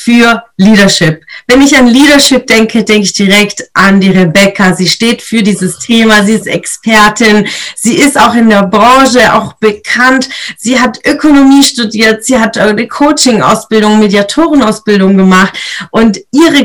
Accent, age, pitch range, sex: German, 30-49, 200-255 Hz, female